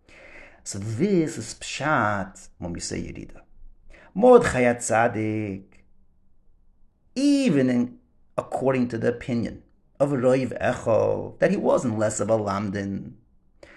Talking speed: 105 wpm